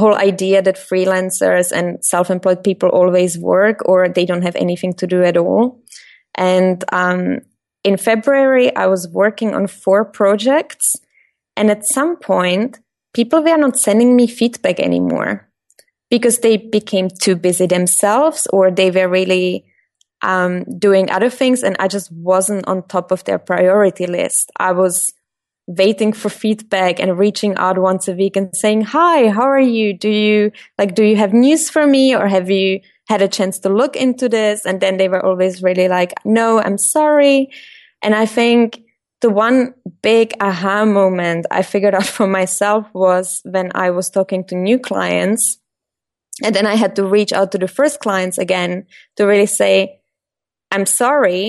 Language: English